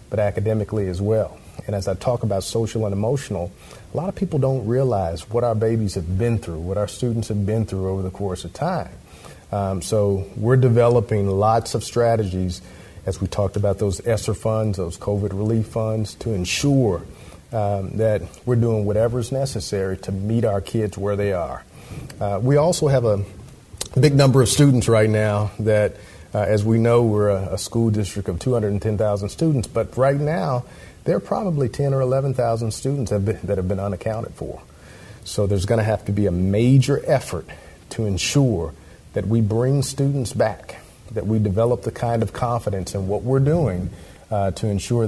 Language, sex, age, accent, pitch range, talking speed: English, male, 40-59, American, 95-115 Hz, 185 wpm